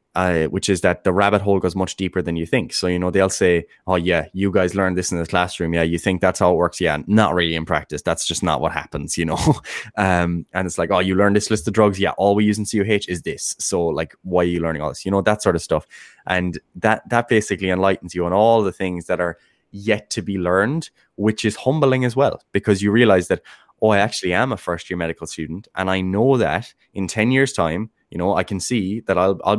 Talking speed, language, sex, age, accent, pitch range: 260 wpm, English, male, 10-29, Irish, 85-105 Hz